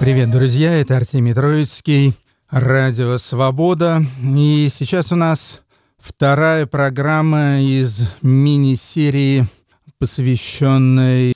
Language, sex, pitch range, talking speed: Russian, male, 115-140 Hz, 85 wpm